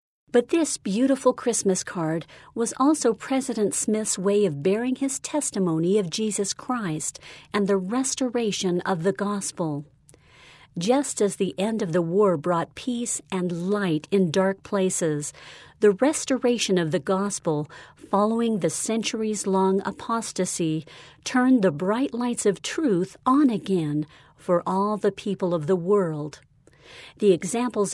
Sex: female